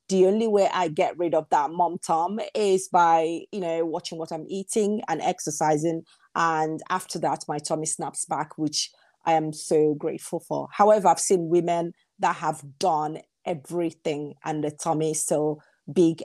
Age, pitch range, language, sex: 30-49, 155-185 Hz, English, female